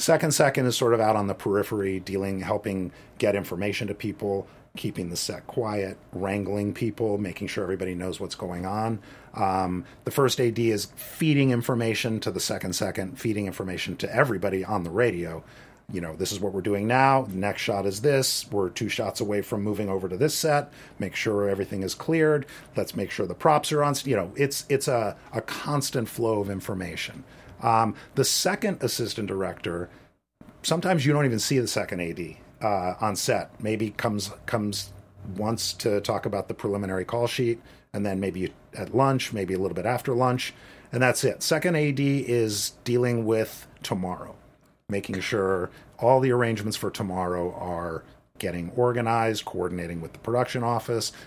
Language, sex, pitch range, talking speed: English, male, 95-125 Hz, 180 wpm